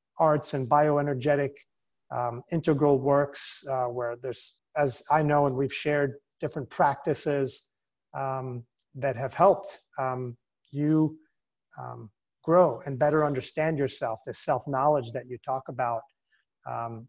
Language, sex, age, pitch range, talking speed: English, male, 30-49, 125-150 Hz, 130 wpm